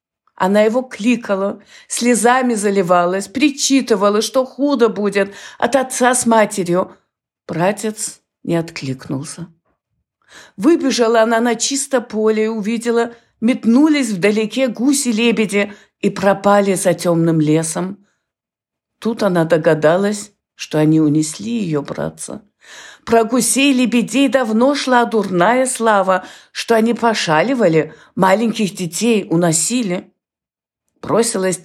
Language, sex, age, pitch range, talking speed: Ukrainian, female, 50-69, 175-245 Hz, 100 wpm